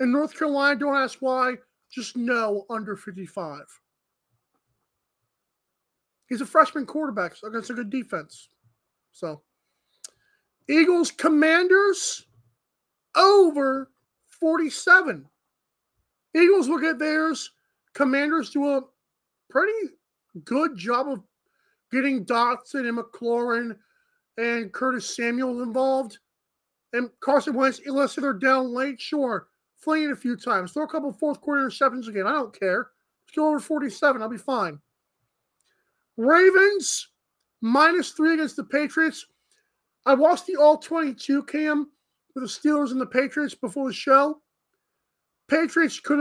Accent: American